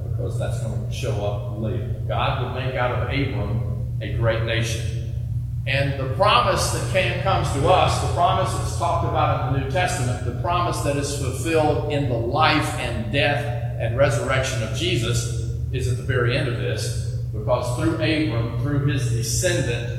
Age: 40-59